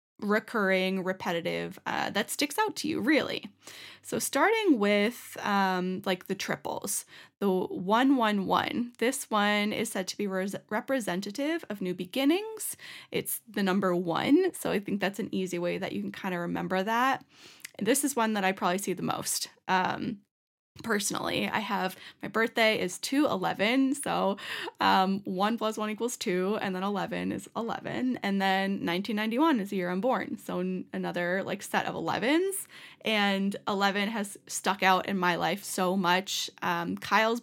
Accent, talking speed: American, 170 wpm